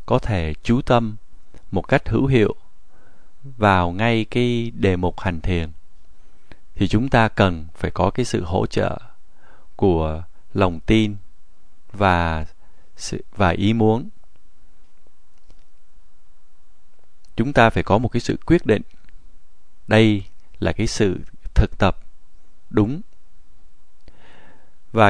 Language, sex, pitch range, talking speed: Vietnamese, male, 90-115 Hz, 120 wpm